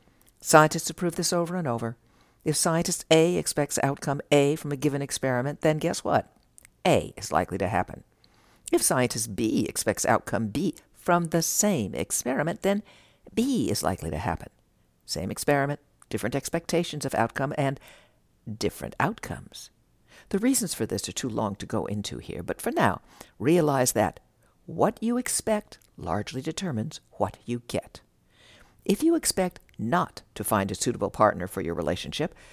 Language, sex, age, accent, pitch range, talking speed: English, female, 60-79, American, 115-180 Hz, 155 wpm